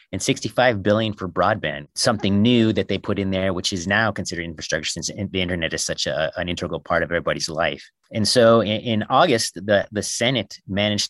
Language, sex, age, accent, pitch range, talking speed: English, male, 30-49, American, 90-115 Hz, 200 wpm